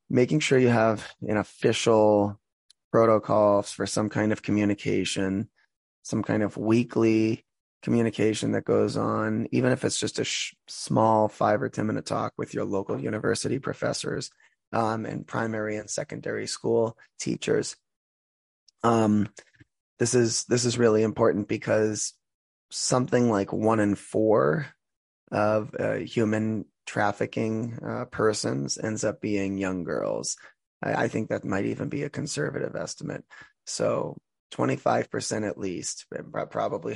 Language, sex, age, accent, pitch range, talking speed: English, male, 20-39, American, 105-115 Hz, 135 wpm